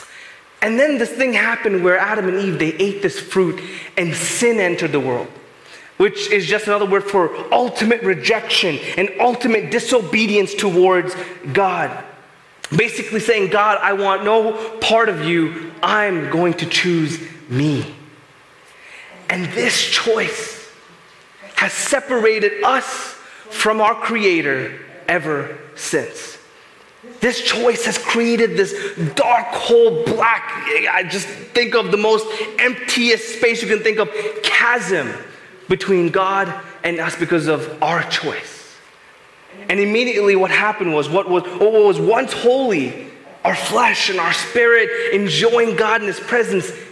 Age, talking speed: 30-49, 135 wpm